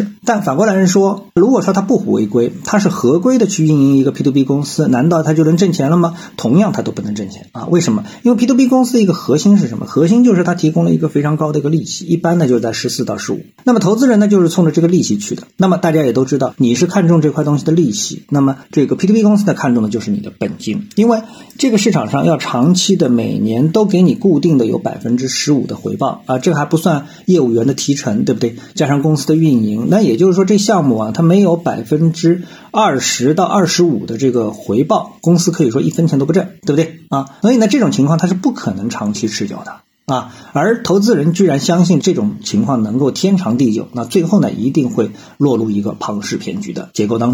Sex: male